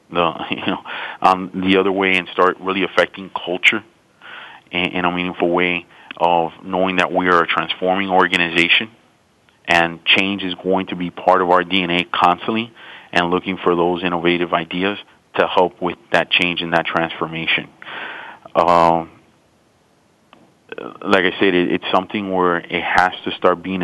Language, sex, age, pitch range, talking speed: English, male, 30-49, 85-95 Hz, 150 wpm